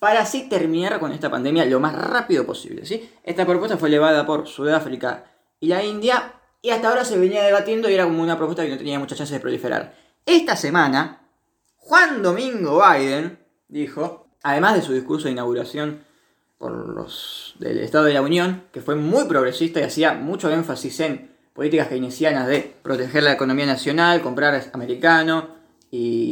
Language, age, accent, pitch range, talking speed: Spanish, 20-39, Argentinian, 145-205 Hz, 175 wpm